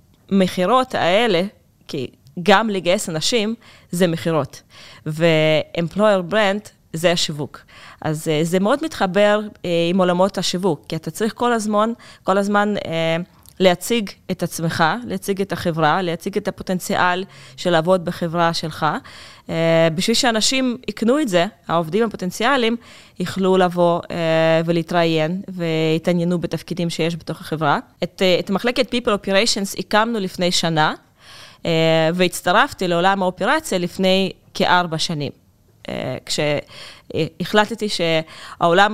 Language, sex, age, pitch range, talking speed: Hebrew, female, 20-39, 165-195 Hz, 120 wpm